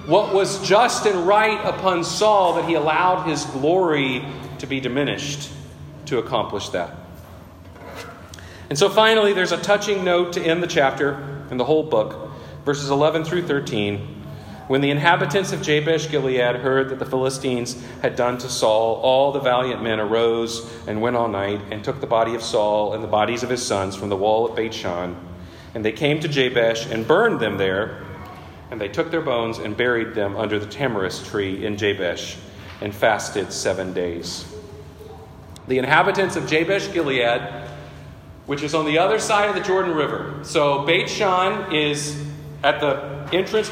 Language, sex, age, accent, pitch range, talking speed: English, male, 40-59, American, 115-175 Hz, 170 wpm